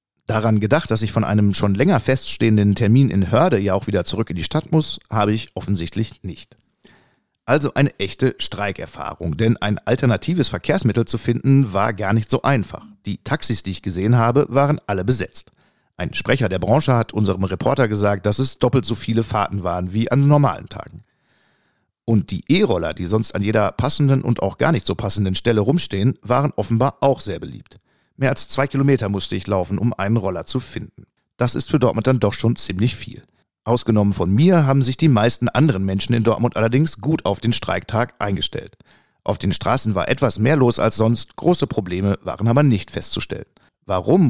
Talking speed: 190 wpm